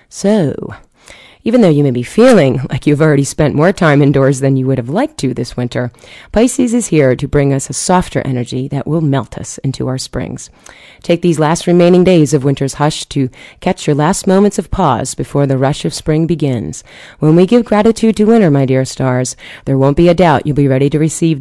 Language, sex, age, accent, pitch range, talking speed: English, female, 30-49, American, 135-175 Hz, 220 wpm